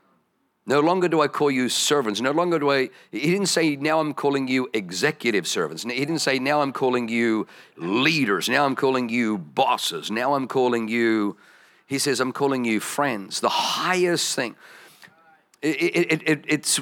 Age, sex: 50-69, male